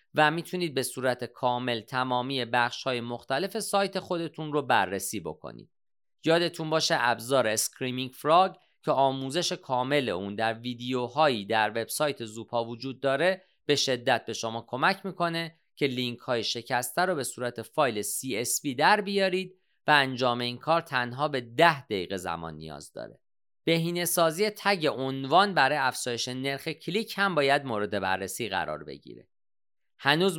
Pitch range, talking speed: 120-160 Hz, 140 wpm